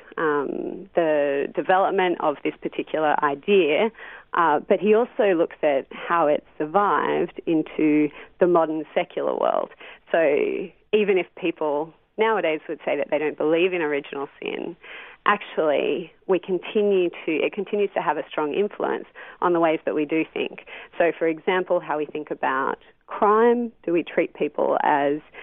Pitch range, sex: 155-205 Hz, female